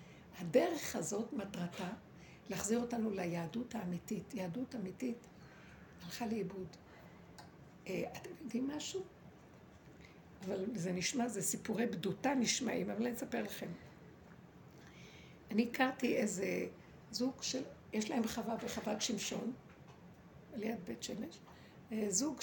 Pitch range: 200-245 Hz